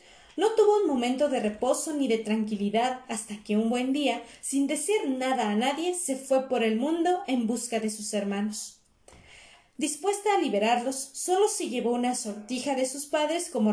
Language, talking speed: Spanish, 180 wpm